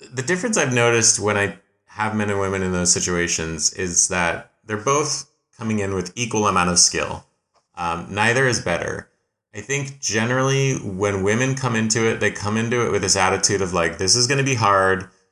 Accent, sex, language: American, male, English